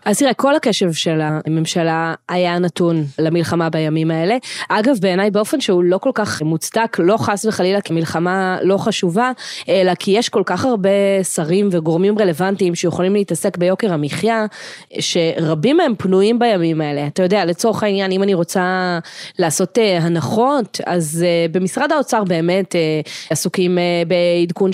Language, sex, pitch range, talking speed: Hebrew, female, 165-205 Hz, 145 wpm